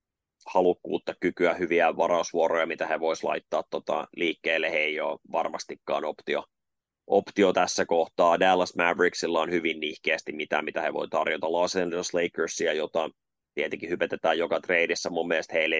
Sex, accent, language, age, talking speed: male, native, Finnish, 30-49, 150 wpm